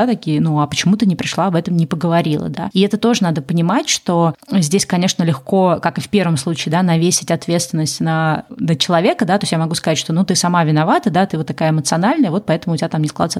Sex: female